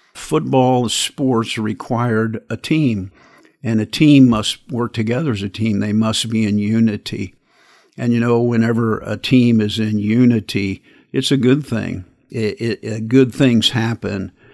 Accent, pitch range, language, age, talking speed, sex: American, 105-120 Hz, English, 50-69, 155 wpm, male